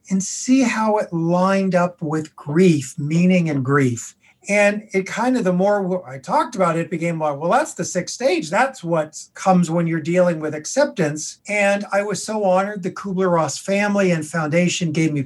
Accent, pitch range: American, 165-205 Hz